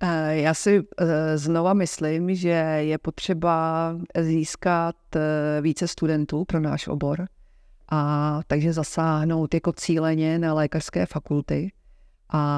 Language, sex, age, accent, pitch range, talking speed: Czech, female, 40-59, native, 145-160 Hz, 105 wpm